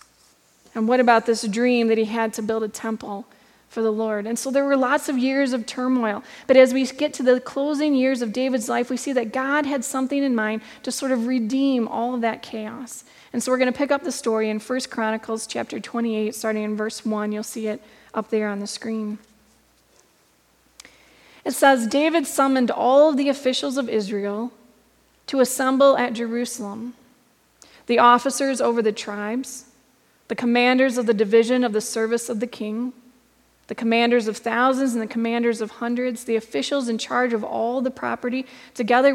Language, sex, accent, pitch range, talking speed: English, female, American, 225-265 Hz, 190 wpm